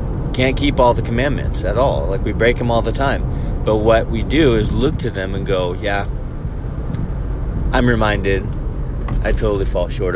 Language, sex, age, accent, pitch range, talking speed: English, male, 30-49, American, 100-130 Hz, 185 wpm